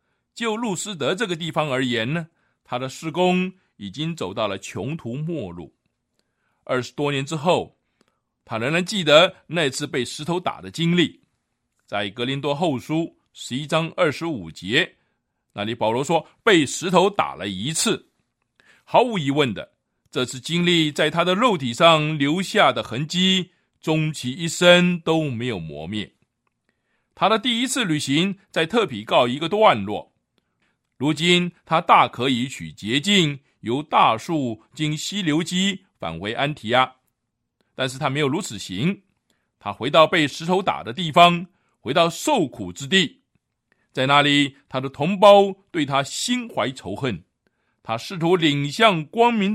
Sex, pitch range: male, 130-180 Hz